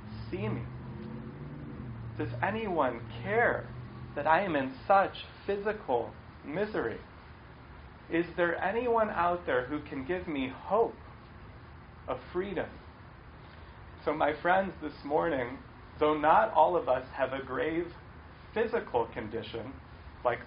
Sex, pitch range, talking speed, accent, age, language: male, 120-165 Hz, 115 wpm, American, 30-49, English